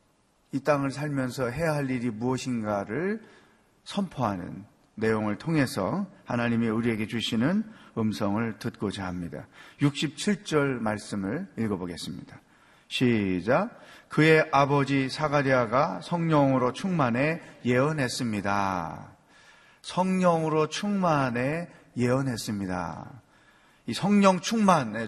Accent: native